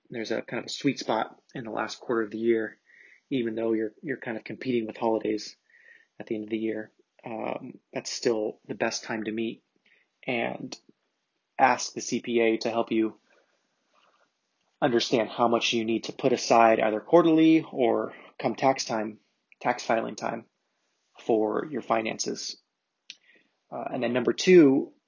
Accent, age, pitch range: American, 30-49, 110-125 Hz